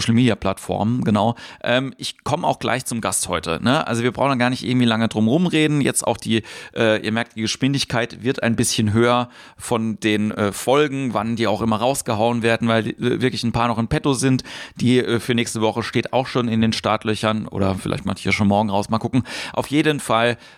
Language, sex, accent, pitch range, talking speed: German, male, German, 105-125 Hz, 225 wpm